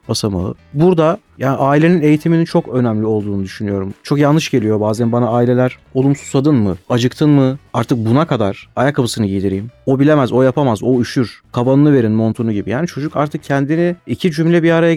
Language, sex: Turkish, male